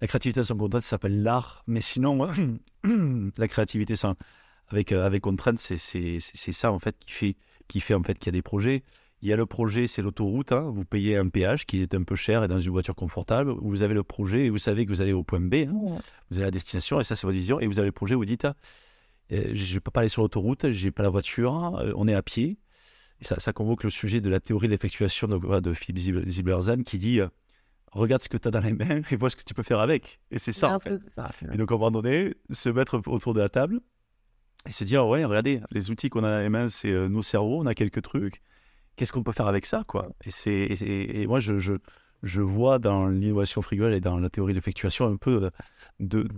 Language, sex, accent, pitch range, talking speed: French, male, French, 100-120 Hz, 250 wpm